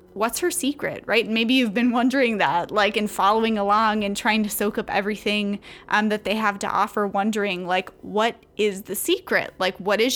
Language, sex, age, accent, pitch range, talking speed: English, female, 20-39, American, 205-255 Hz, 200 wpm